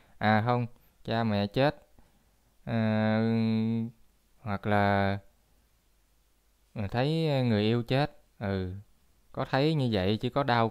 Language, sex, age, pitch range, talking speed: Vietnamese, male, 20-39, 110-135 Hz, 110 wpm